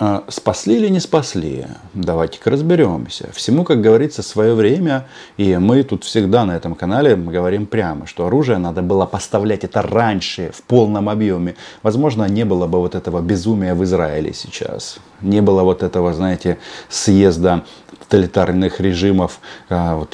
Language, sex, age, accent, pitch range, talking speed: Russian, male, 30-49, native, 85-105 Hz, 145 wpm